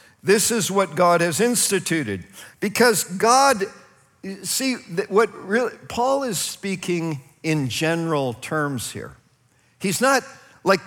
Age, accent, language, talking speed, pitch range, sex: 50-69, American, English, 115 wpm, 140-190 Hz, male